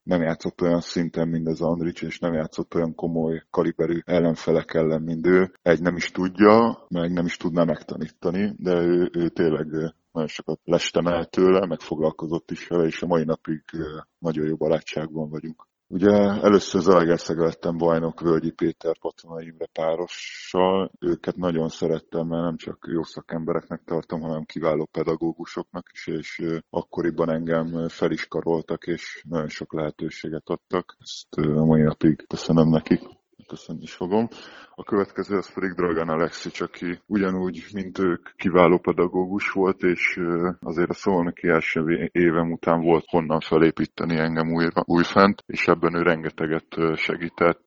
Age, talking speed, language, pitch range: 20-39, 145 wpm, Hungarian, 80-85 Hz